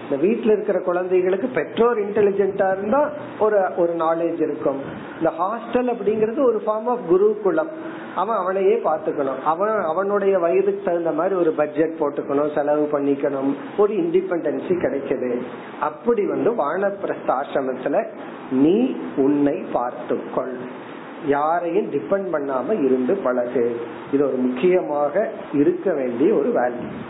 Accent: native